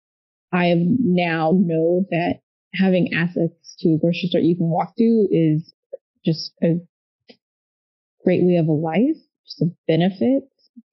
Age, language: 20-39, English